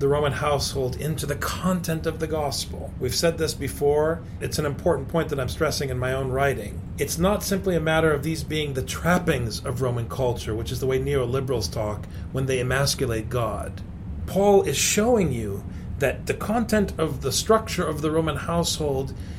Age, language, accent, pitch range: 40-59, English, American, 115-170 Hz